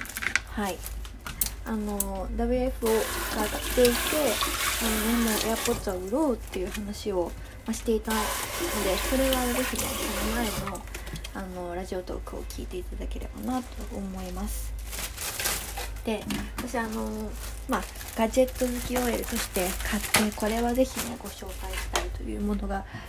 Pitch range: 210-265 Hz